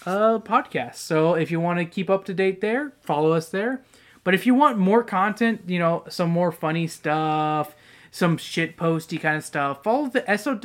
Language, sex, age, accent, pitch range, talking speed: English, male, 20-39, American, 150-200 Hz, 210 wpm